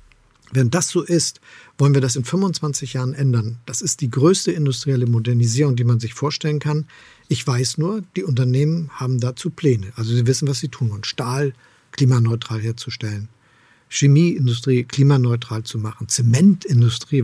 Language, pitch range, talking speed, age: German, 120-145 Hz, 155 wpm, 50-69